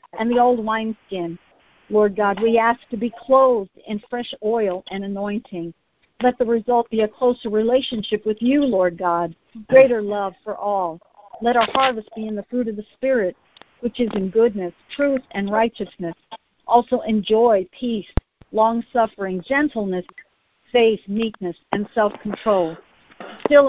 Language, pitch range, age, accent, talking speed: English, 200-240 Hz, 50-69, American, 150 wpm